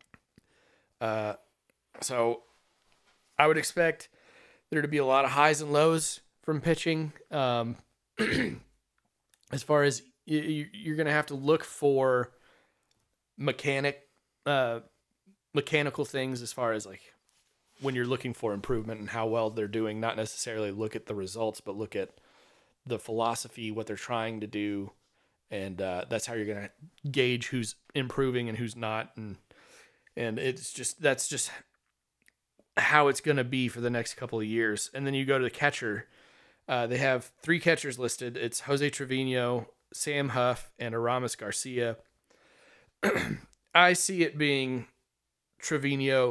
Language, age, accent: English, 30-49, American